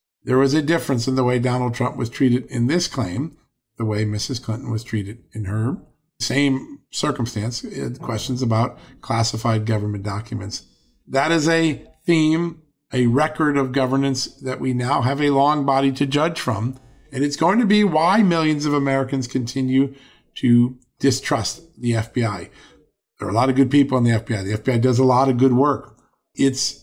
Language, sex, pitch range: English, male, 120-140 Hz